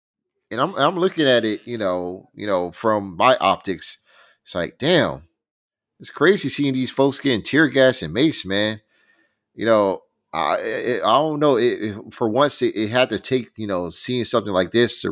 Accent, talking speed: American, 200 wpm